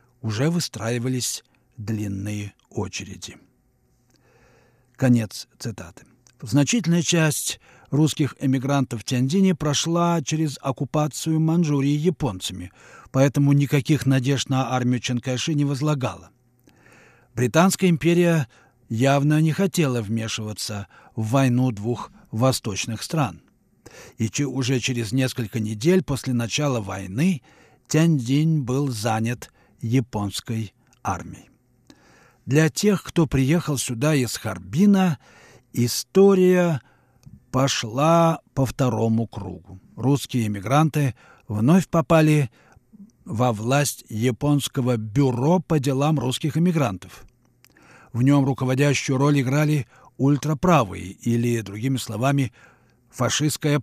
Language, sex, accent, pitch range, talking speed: Russian, male, native, 120-150 Hz, 95 wpm